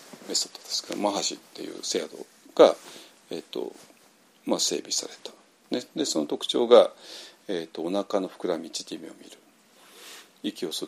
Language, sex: Japanese, male